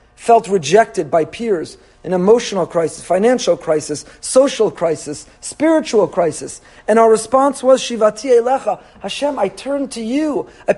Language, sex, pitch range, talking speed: English, male, 200-255 Hz, 140 wpm